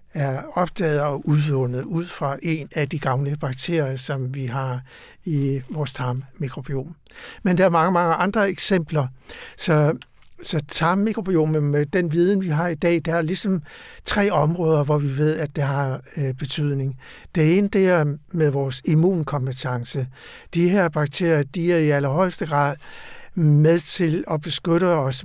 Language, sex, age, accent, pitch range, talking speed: Danish, male, 60-79, native, 145-180 Hz, 155 wpm